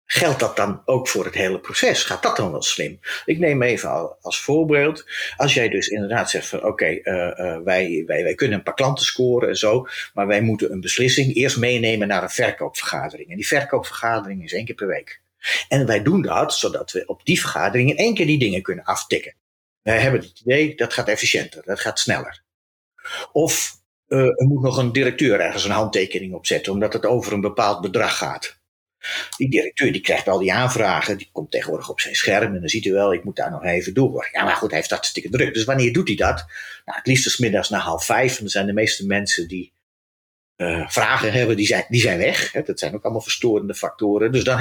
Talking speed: 225 wpm